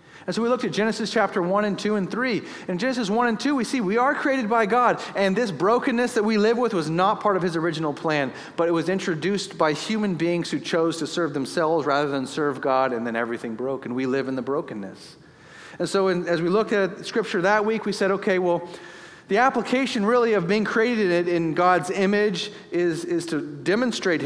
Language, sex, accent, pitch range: English, male, American, 150-195 Hz